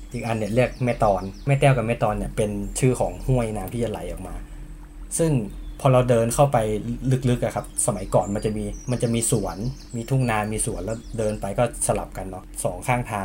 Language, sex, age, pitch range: Thai, male, 20-39, 105-130 Hz